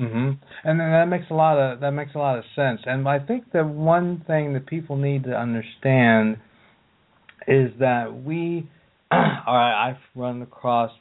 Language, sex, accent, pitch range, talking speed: English, male, American, 110-135 Hz, 175 wpm